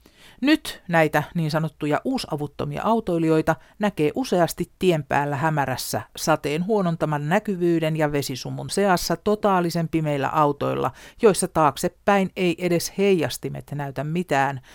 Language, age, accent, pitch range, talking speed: Finnish, 60-79, native, 140-175 Hz, 110 wpm